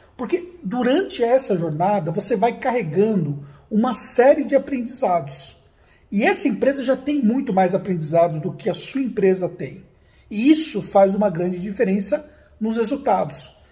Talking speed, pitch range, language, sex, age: 145 wpm, 185-245 Hz, Portuguese, male, 50-69